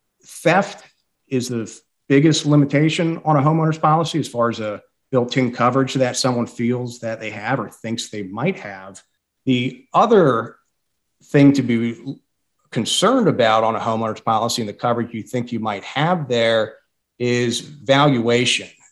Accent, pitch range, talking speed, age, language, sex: American, 110-135 Hz, 150 wpm, 50-69, English, male